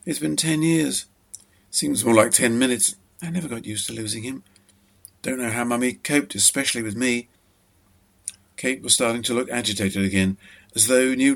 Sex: male